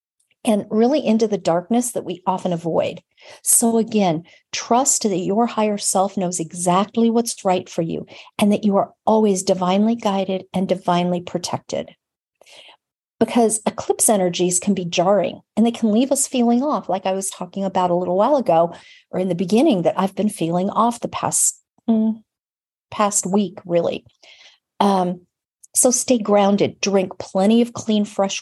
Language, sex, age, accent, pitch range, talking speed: English, female, 50-69, American, 180-220 Hz, 165 wpm